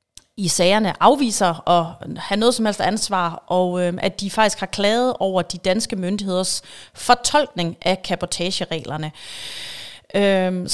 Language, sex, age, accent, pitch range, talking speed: Danish, female, 30-49, native, 165-215 Hz, 135 wpm